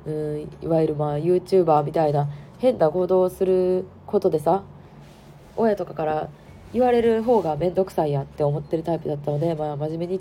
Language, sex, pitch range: Japanese, female, 150-210 Hz